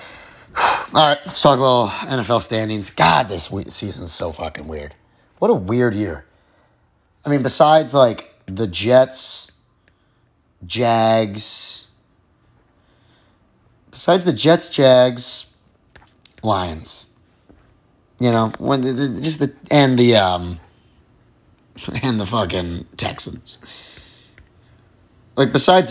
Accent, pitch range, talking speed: American, 100-125 Hz, 105 wpm